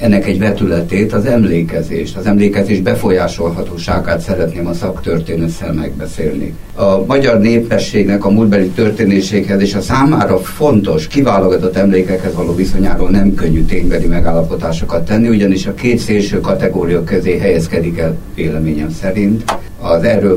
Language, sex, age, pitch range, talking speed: Hungarian, male, 50-69, 85-105 Hz, 125 wpm